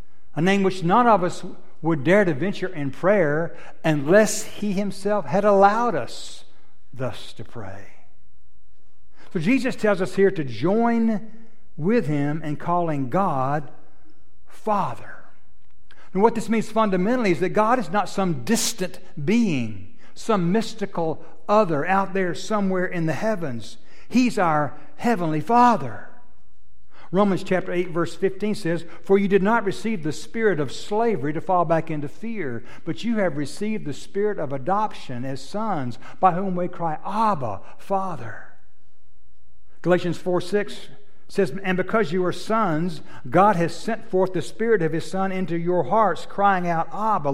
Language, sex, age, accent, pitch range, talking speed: English, male, 60-79, American, 145-205 Hz, 150 wpm